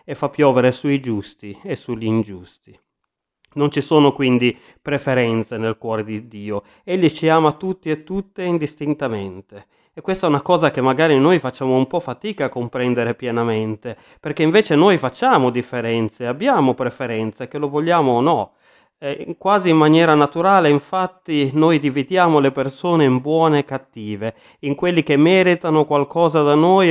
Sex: male